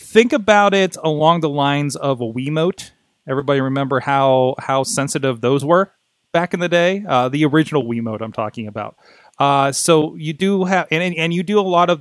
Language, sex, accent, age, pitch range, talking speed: English, male, American, 30-49, 125-160 Hz, 195 wpm